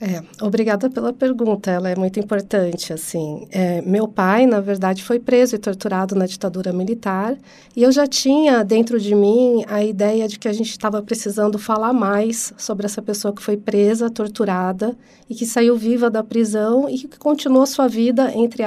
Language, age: Portuguese, 40-59